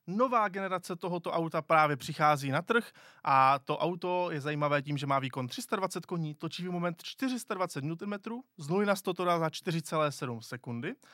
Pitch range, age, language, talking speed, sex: 145-185 Hz, 20-39, Czech, 155 wpm, male